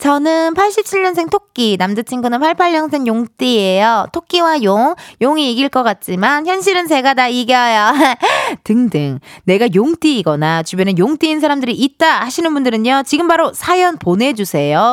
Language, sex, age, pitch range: Korean, female, 20-39, 200-325 Hz